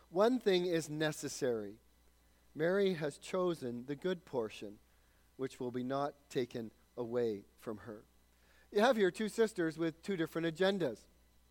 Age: 40-59